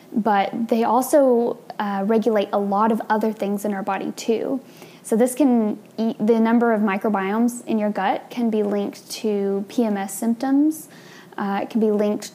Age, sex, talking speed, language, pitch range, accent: 10-29, female, 170 wpm, English, 200-240 Hz, American